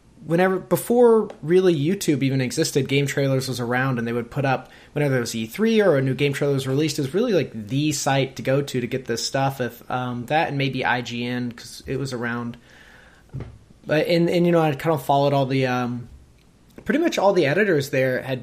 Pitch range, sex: 125-155 Hz, male